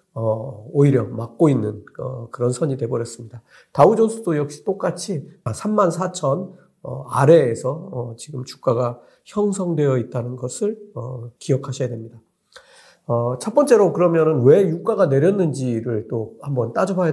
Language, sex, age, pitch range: Korean, male, 50-69, 125-190 Hz